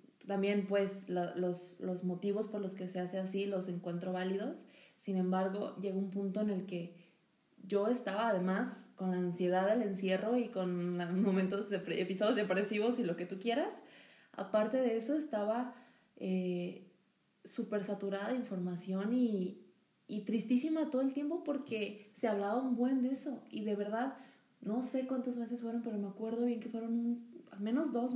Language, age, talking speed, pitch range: Spanish, 20-39, 175 wpm, 190-235 Hz